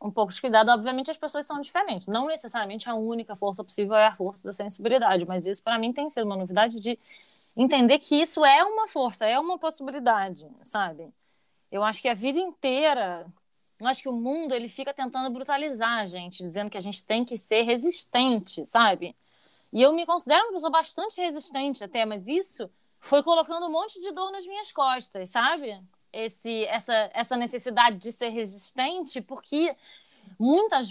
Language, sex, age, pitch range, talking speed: Portuguese, female, 20-39, 215-275 Hz, 185 wpm